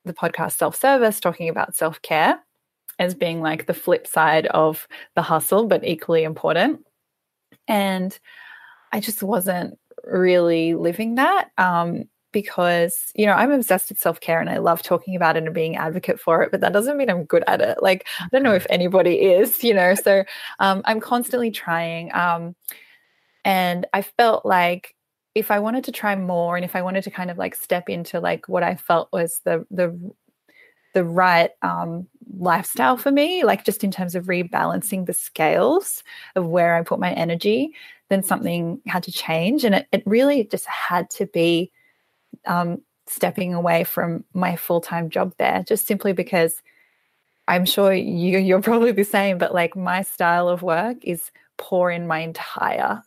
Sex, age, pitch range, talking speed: female, 20-39, 170-220 Hz, 175 wpm